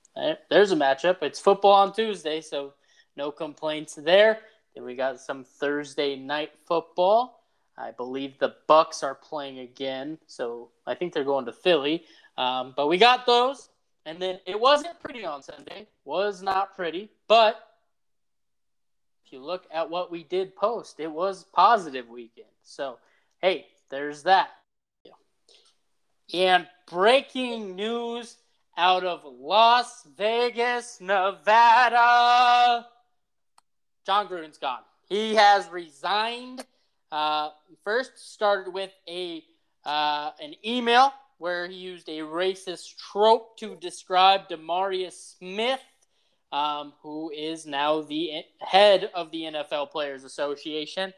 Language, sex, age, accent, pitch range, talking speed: English, male, 20-39, American, 155-230 Hz, 125 wpm